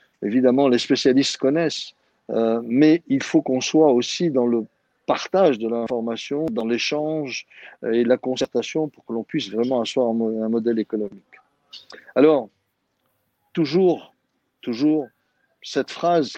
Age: 50-69